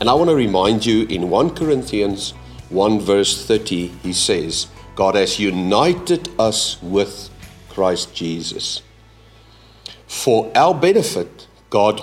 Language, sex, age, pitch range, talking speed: English, male, 50-69, 95-125 Hz, 125 wpm